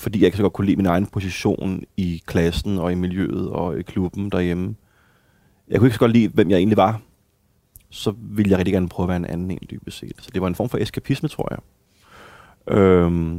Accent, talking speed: native, 235 wpm